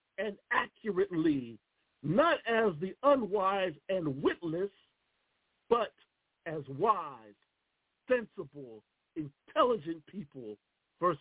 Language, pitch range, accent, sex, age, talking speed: English, 145-215 Hz, American, male, 50-69, 80 wpm